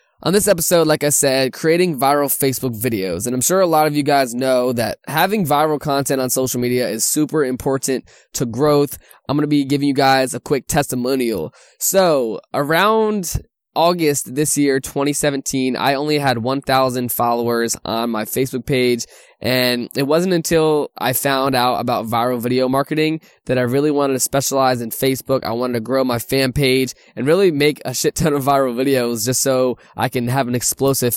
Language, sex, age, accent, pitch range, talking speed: English, male, 10-29, American, 125-150 Hz, 190 wpm